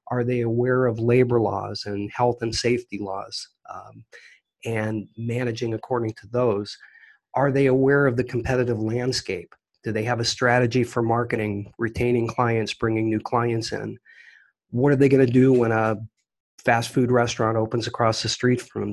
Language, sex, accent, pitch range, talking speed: English, male, American, 110-130 Hz, 170 wpm